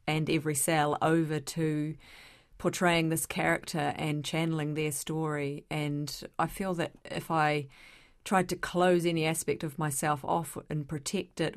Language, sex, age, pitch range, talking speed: English, female, 30-49, 150-180 Hz, 150 wpm